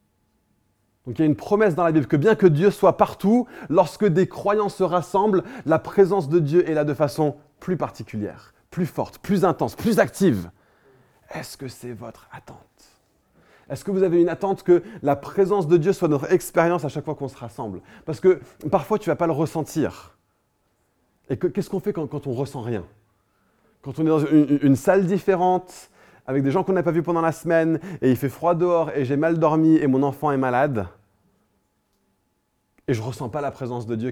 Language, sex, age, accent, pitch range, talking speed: French, male, 20-39, French, 120-175 Hz, 215 wpm